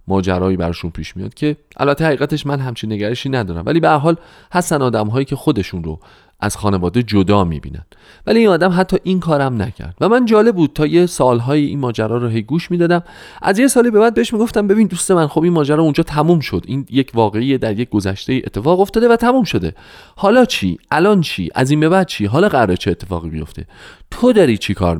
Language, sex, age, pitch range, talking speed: Persian, male, 40-59, 105-175 Hz, 215 wpm